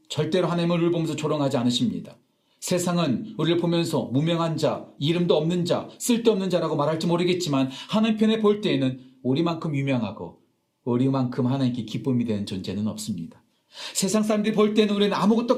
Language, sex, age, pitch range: Korean, male, 40-59, 120-180 Hz